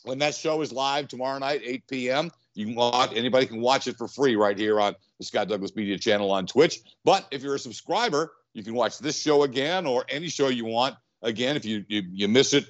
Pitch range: 105-130 Hz